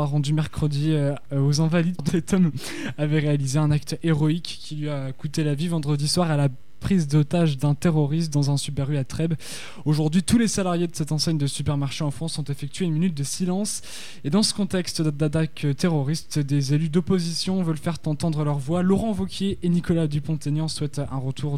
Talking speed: 195 wpm